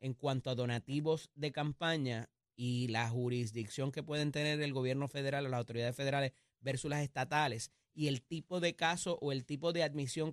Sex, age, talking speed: male, 30-49, 185 wpm